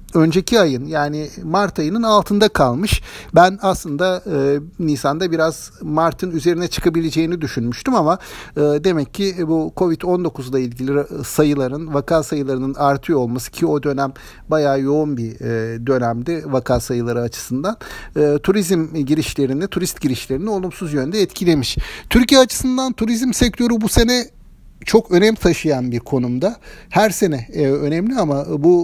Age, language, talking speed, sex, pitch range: 60-79, Turkish, 125 wpm, male, 145-190 Hz